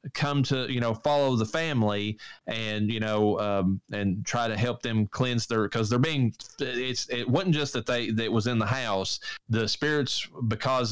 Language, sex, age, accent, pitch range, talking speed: English, male, 20-39, American, 105-125 Hz, 200 wpm